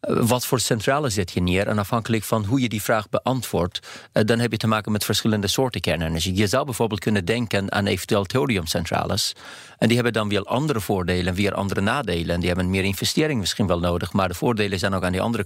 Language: Dutch